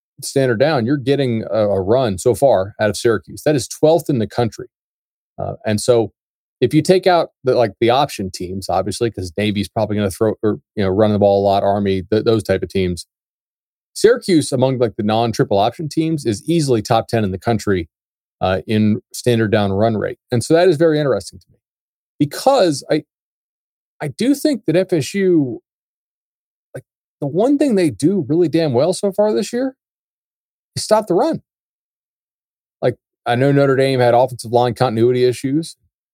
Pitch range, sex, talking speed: 105-155 Hz, male, 190 wpm